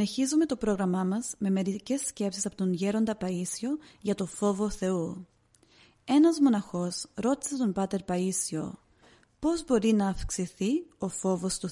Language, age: Greek, 30-49